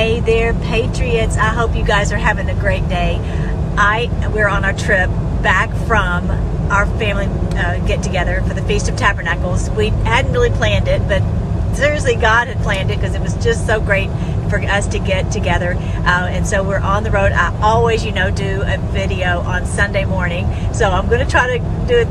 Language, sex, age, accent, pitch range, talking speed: English, female, 40-59, American, 85-105 Hz, 205 wpm